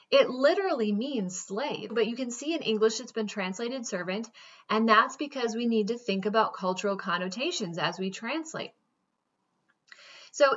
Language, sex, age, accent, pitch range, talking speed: English, female, 20-39, American, 190-260 Hz, 160 wpm